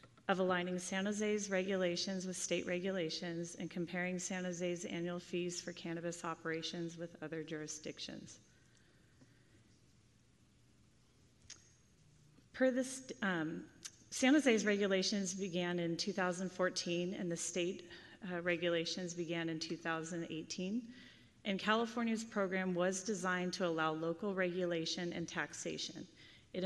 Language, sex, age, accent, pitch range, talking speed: English, female, 30-49, American, 170-195 Hz, 110 wpm